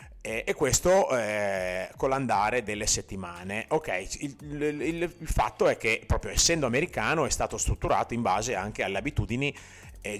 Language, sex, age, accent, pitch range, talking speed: Italian, male, 30-49, native, 100-130 Hz, 160 wpm